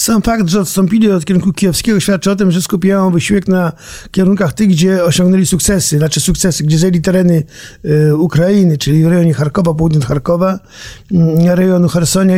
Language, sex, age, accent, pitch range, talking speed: Polish, male, 50-69, native, 165-190 Hz, 170 wpm